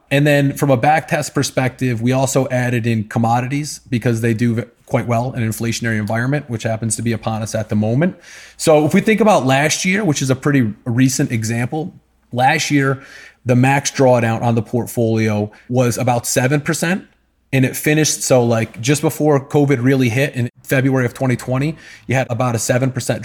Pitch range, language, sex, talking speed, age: 120-150 Hz, English, male, 185 wpm, 30-49